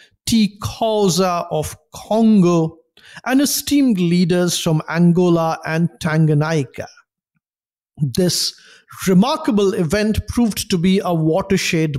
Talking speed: 90 wpm